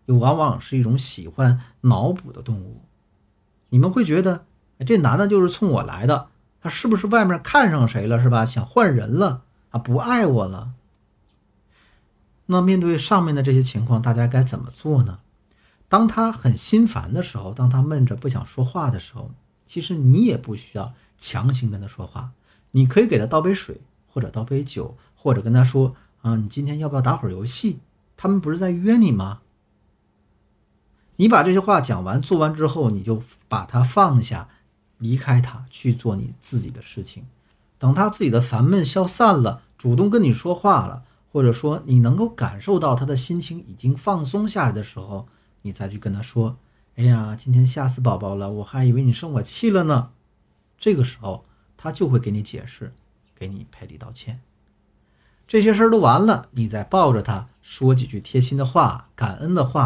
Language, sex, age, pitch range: Chinese, male, 50-69, 115-155 Hz